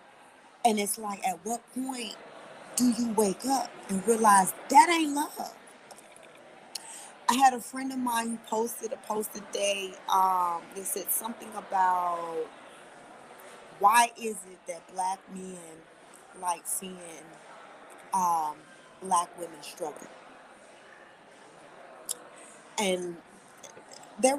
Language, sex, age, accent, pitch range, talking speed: English, female, 20-39, American, 170-220 Hz, 110 wpm